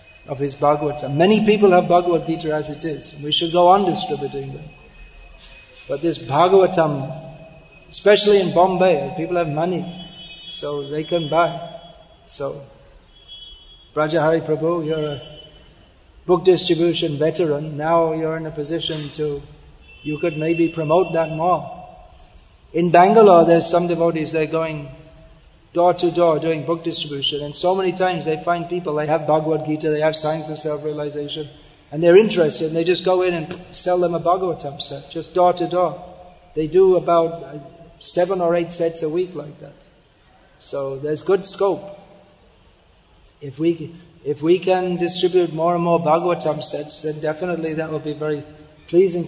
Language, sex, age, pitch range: English, male, 40-59, 150-175 Hz